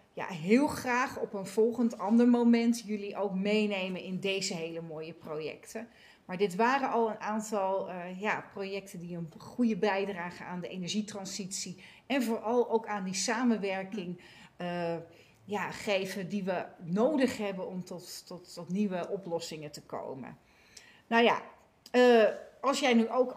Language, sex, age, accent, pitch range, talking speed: Dutch, female, 40-59, Dutch, 190-230 Hz, 155 wpm